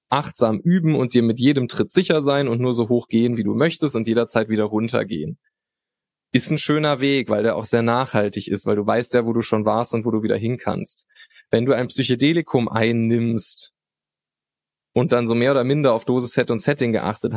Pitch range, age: 115-145 Hz, 20-39